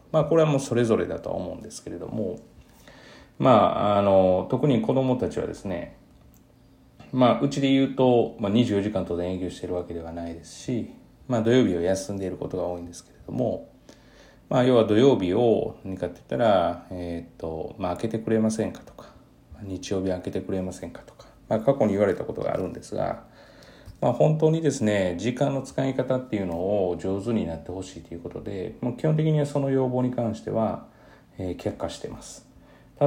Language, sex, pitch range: Japanese, male, 90-125 Hz